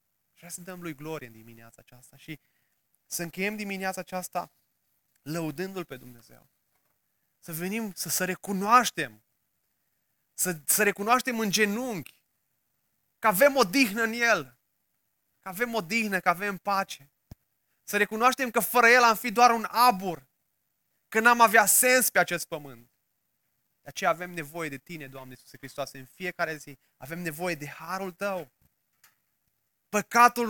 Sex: male